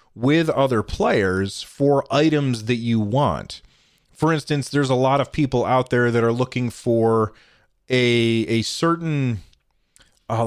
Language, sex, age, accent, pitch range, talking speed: English, male, 30-49, American, 110-135 Hz, 145 wpm